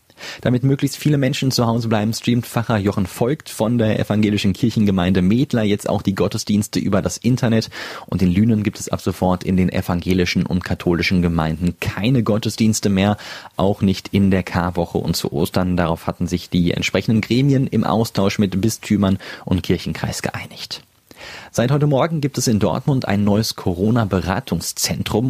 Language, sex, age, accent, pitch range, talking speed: German, male, 30-49, German, 90-115 Hz, 165 wpm